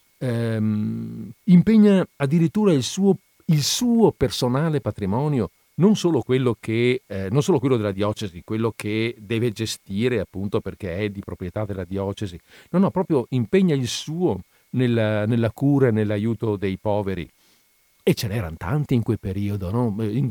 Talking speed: 155 wpm